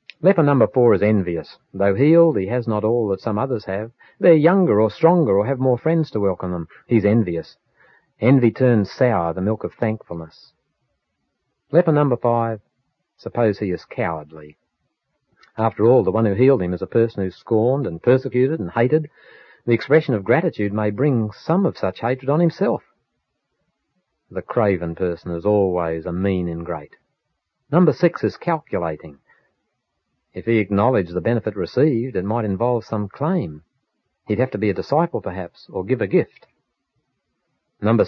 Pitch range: 95-130 Hz